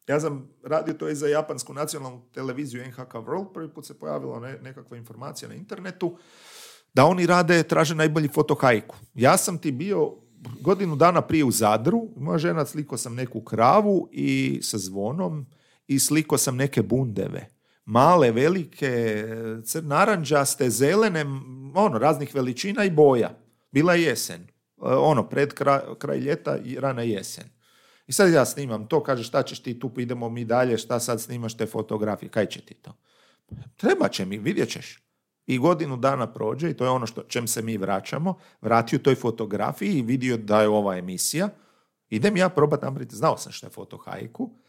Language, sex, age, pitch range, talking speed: Croatian, male, 40-59, 115-160 Hz, 170 wpm